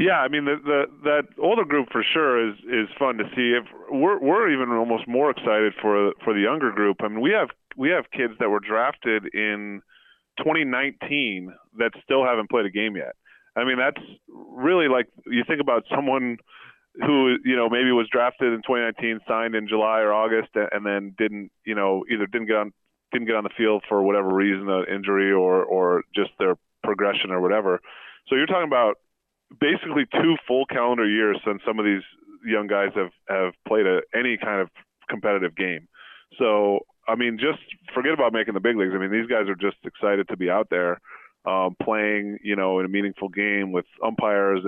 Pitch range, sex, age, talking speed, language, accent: 100-115 Hz, male, 30-49, 200 wpm, English, American